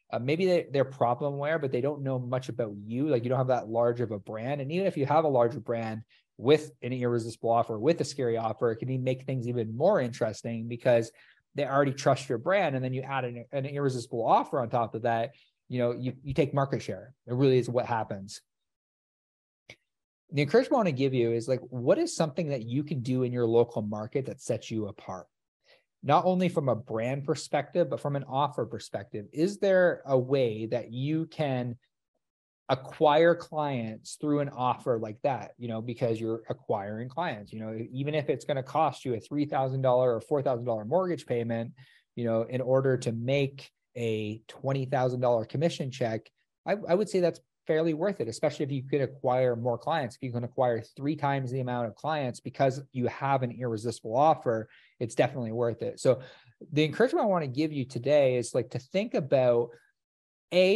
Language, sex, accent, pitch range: English, male, American, 120-145 Hz